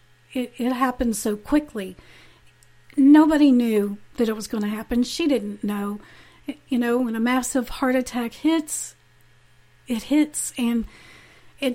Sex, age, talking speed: female, 40-59, 145 wpm